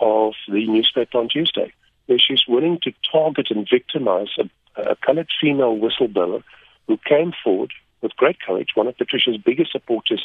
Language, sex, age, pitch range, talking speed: English, male, 50-69, 115-190 Hz, 165 wpm